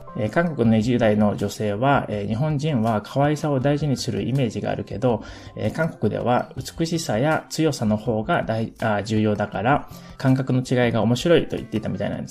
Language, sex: Japanese, male